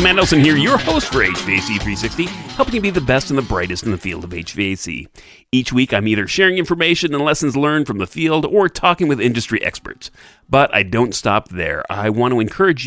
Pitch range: 100-155 Hz